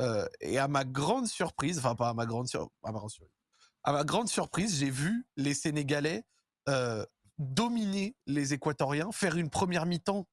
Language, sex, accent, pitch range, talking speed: French, male, French, 135-170 Hz, 100 wpm